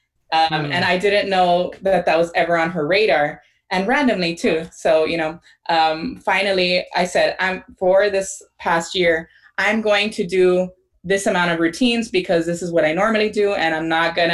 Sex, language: female, English